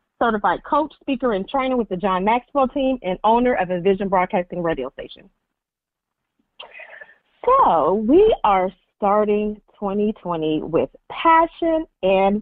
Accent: American